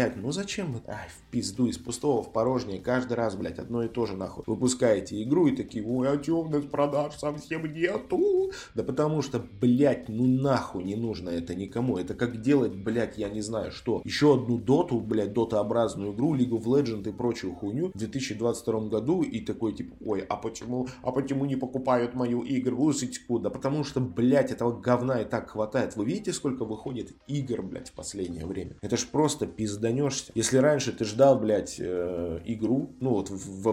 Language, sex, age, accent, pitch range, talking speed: Russian, male, 20-39, native, 100-130 Hz, 190 wpm